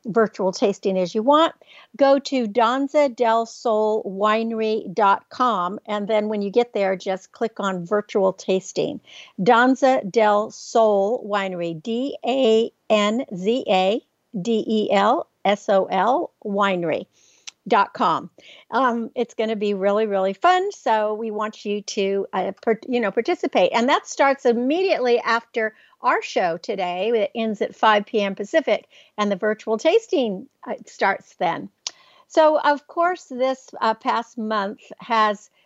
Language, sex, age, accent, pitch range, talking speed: English, female, 60-79, American, 200-245 Hz, 125 wpm